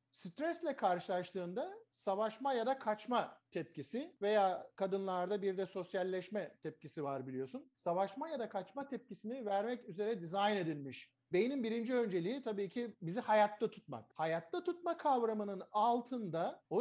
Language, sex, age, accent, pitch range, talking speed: Turkish, male, 50-69, native, 185-250 Hz, 130 wpm